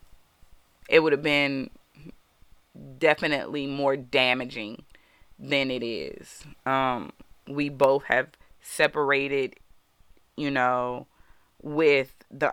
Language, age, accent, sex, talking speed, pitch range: English, 30-49, American, female, 90 wpm, 125-140 Hz